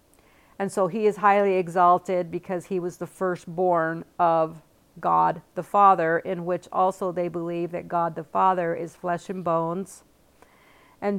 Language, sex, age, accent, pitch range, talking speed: English, female, 50-69, American, 175-210 Hz, 155 wpm